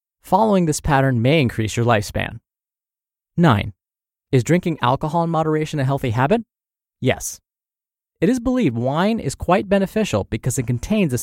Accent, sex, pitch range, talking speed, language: American, male, 115-155 Hz, 150 wpm, English